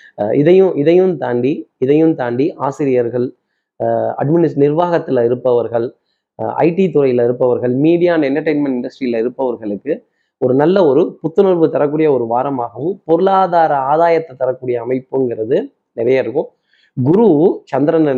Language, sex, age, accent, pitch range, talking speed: Tamil, male, 30-49, native, 130-170 Hz, 105 wpm